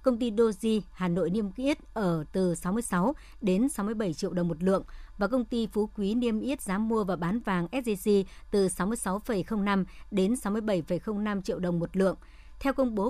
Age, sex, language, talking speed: 60-79, male, Vietnamese, 185 wpm